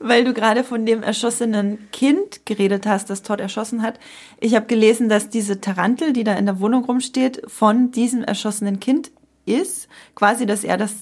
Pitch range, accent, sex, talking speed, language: 200-235 Hz, German, female, 185 wpm, German